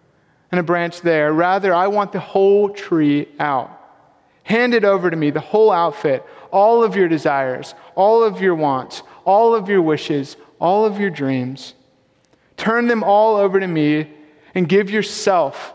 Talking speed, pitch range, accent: 170 wpm, 145-190 Hz, American